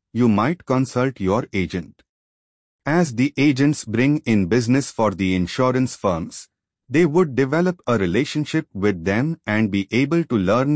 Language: Malayalam